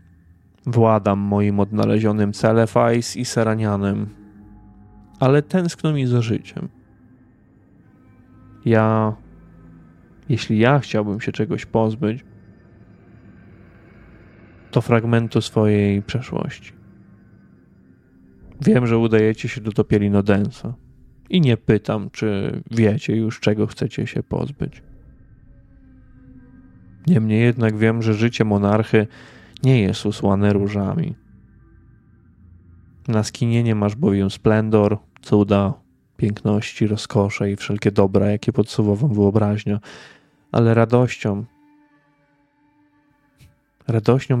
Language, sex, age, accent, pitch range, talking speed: Polish, male, 20-39, native, 100-120 Hz, 90 wpm